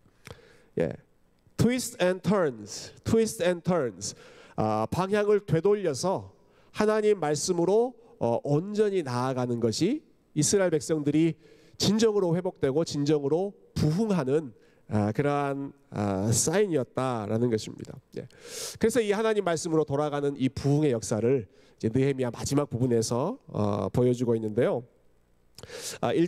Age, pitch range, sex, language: 40-59, 120-185 Hz, male, Korean